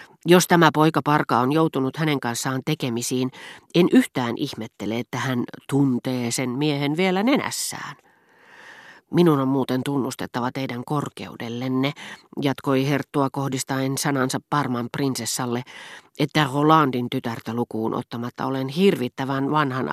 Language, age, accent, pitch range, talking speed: Finnish, 40-59, native, 130-160 Hz, 115 wpm